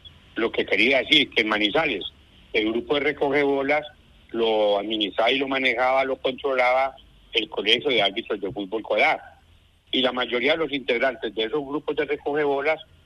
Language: Spanish